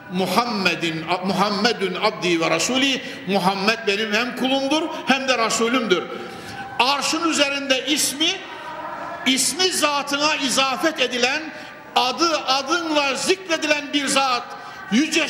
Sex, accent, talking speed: male, native, 100 wpm